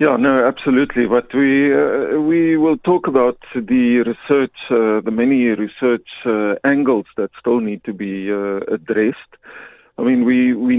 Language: English